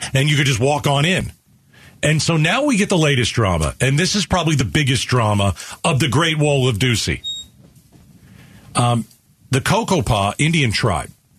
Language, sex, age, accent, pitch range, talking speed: English, male, 40-59, American, 120-165 Hz, 175 wpm